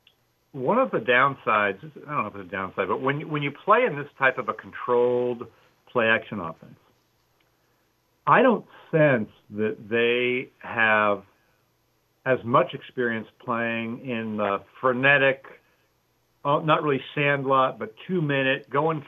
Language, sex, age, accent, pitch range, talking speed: English, male, 50-69, American, 115-140 Hz, 135 wpm